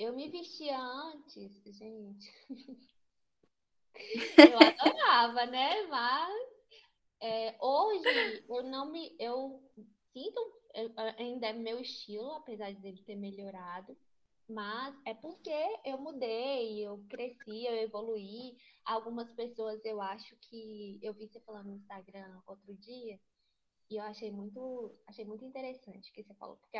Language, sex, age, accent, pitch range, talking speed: Portuguese, female, 10-29, Brazilian, 215-275 Hz, 135 wpm